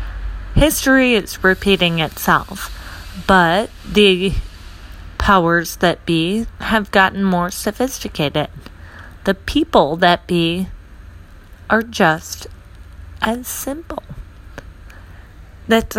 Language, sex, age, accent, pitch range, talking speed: English, female, 30-49, American, 140-205 Hz, 85 wpm